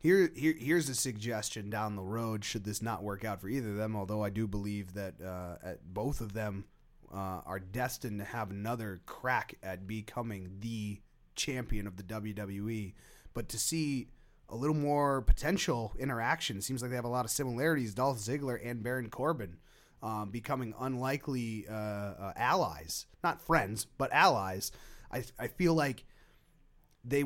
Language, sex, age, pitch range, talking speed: English, male, 30-49, 105-135 Hz, 170 wpm